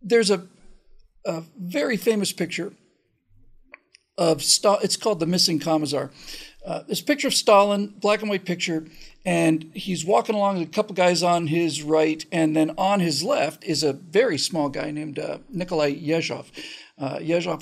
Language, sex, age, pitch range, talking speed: English, male, 50-69, 155-210 Hz, 165 wpm